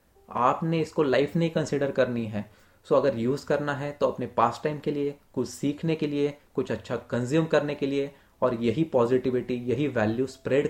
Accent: native